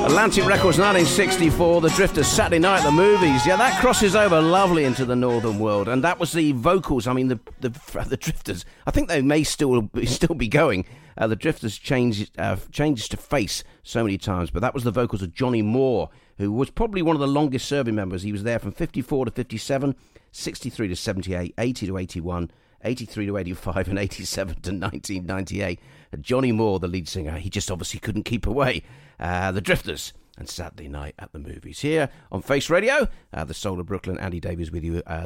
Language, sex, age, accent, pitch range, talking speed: English, male, 40-59, British, 90-135 Hz, 205 wpm